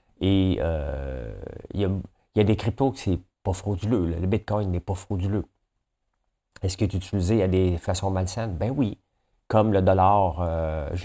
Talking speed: 185 wpm